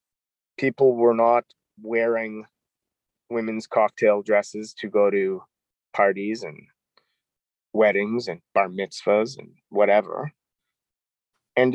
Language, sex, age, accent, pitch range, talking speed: English, male, 30-49, American, 115-135 Hz, 95 wpm